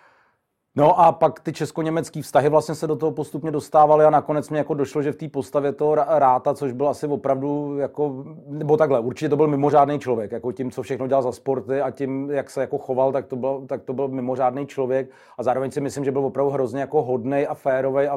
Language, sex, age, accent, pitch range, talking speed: Czech, male, 40-59, native, 120-140 Hz, 220 wpm